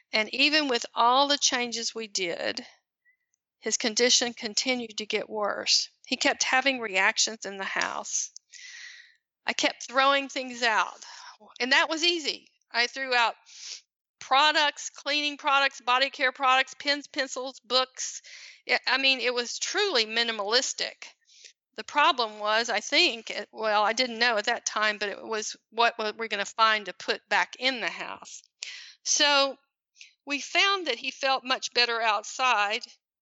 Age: 40-59